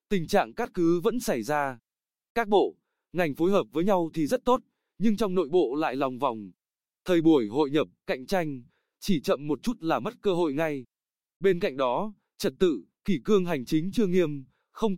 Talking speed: 205 wpm